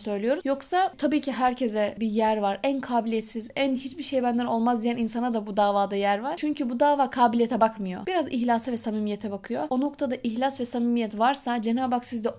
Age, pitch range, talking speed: 10-29, 225-275 Hz, 200 wpm